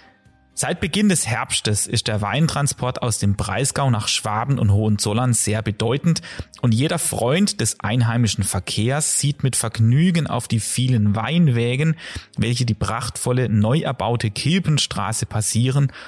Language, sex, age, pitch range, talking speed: German, male, 30-49, 110-140 Hz, 135 wpm